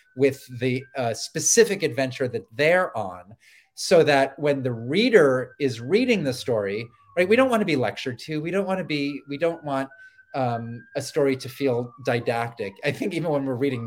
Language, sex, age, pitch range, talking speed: English, male, 30-49, 125-155 Hz, 195 wpm